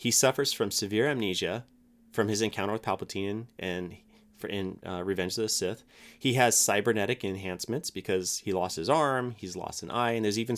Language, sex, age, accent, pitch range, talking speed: English, male, 30-49, American, 95-120 Hz, 185 wpm